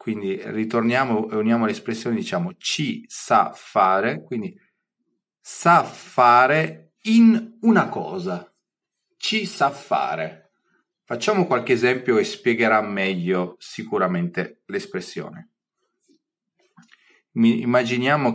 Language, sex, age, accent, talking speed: Italian, male, 30-49, native, 90 wpm